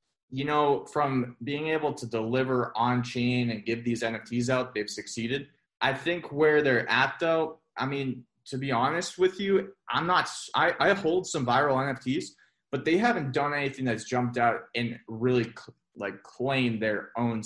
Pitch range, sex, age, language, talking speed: 115-140 Hz, male, 20-39, English, 180 wpm